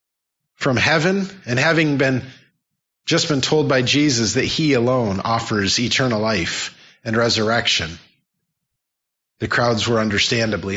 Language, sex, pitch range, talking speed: English, male, 105-150 Hz, 125 wpm